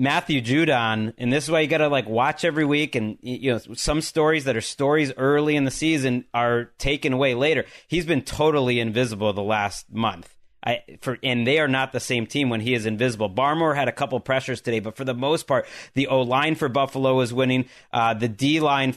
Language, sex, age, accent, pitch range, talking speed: English, male, 30-49, American, 120-140 Hz, 225 wpm